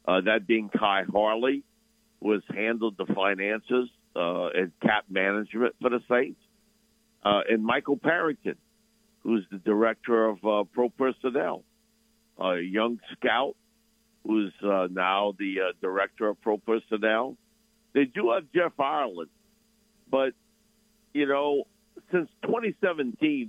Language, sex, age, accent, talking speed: English, male, 60-79, American, 130 wpm